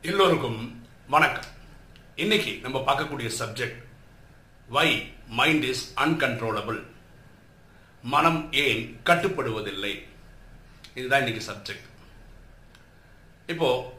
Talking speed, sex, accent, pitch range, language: 75 wpm, male, native, 115-150 Hz, Tamil